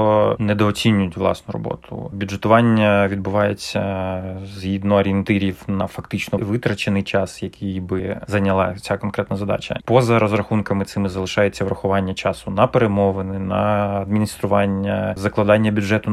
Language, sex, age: Ukrainian, male, 30-49